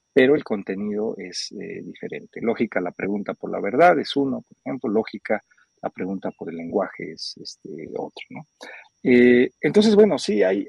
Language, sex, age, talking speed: Spanish, male, 50-69, 180 wpm